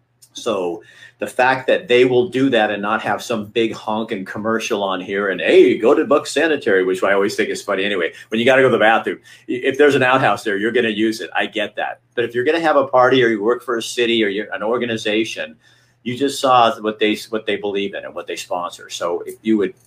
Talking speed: 265 wpm